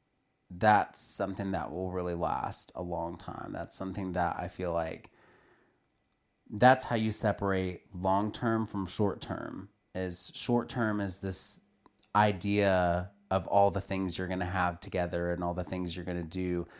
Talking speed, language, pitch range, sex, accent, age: 170 wpm, English, 95-115 Hz, male, American, 30-49